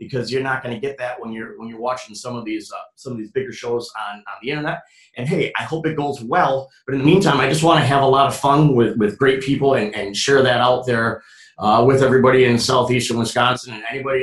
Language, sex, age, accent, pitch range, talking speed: English, male, 30-49, American, 125-175 Hz, 265 wpm